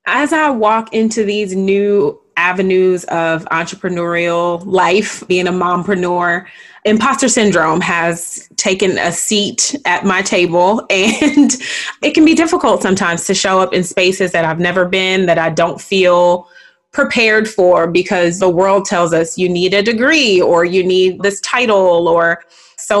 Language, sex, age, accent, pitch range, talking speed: English, female, 20-39, American, 175-210 Hz, 155 wpm